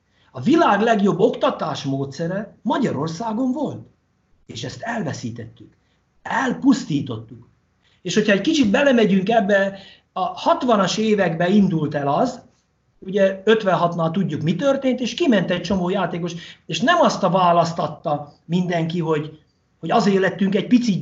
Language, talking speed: Hungarian, 125 wpm